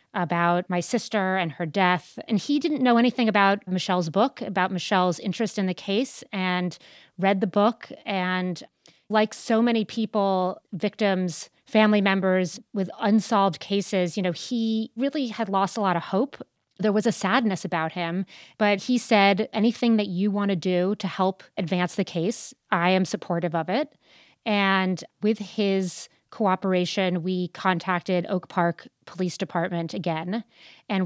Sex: female